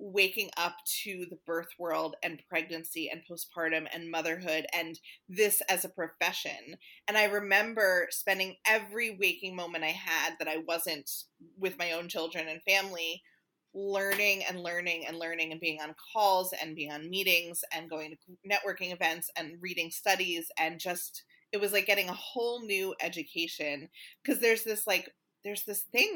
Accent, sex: American, female